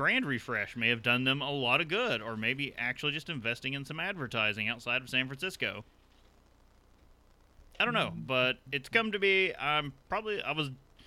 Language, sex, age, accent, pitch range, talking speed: English, male, 30-49, American, 115-130 Hz, 185 wpm